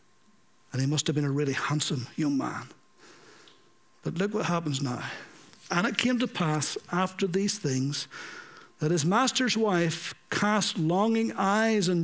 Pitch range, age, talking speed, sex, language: 190-250 Hz, 60-79, 155 wpm, male, English